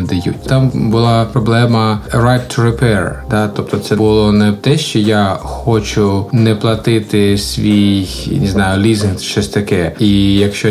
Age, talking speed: 20-39, 145 wpm